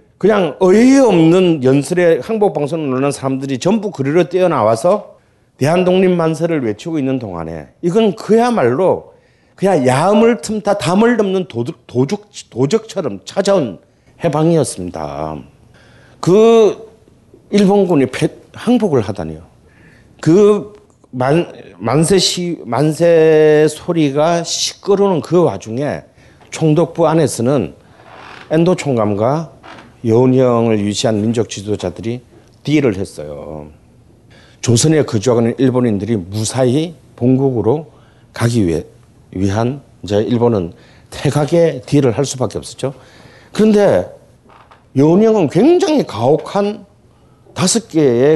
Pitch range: 115-180 Hz